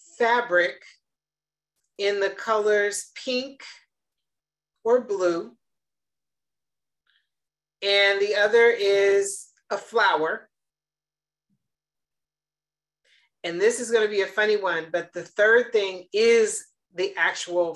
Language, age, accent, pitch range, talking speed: English, 40-59, American, 180-240 Hz, 100 wpm